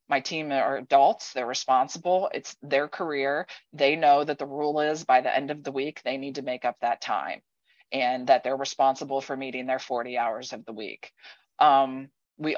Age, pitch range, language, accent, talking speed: 20-39, 135-165 Hz, English, American, 200 wpm